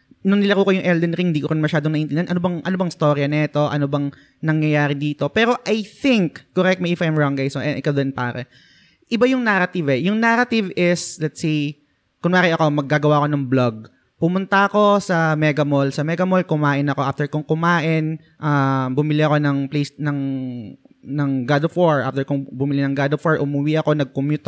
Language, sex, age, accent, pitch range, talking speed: Filipino, male, 20-39, native, 145-185 Hz, 205 wpm